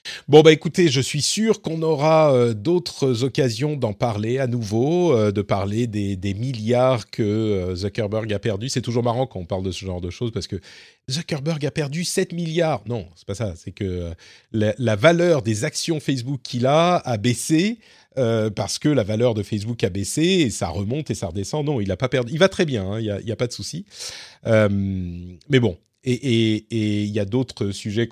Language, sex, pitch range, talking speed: French, male, 105-160 Hz, 220 wpm